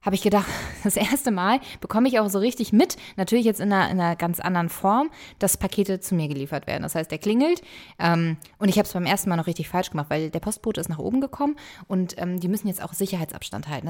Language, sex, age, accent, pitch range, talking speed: German, female, 20-39, German, 180-225 Hz, 250 wpm